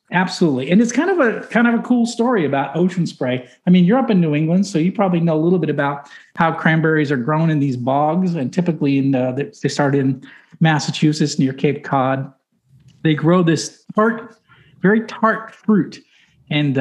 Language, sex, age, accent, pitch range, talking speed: English, male, 50-69, American, 145-195 Hz, 195 wpm